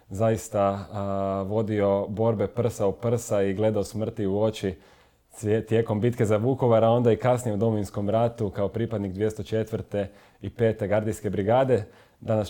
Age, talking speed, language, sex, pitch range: 30-49, 150 wpm, Croatian, male, 100-115 Hz